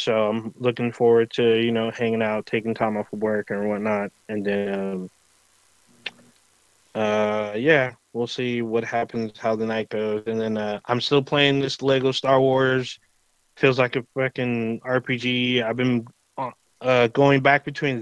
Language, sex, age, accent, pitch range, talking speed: English, male, 20-39, American, 115-140 Hz, 165 wpm